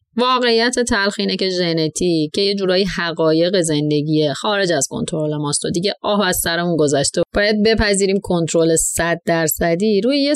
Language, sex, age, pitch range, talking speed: English, female, 30-49, 165-230 Hz, 155 wpm